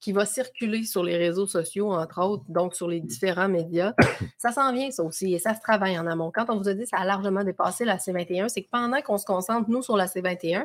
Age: 30-49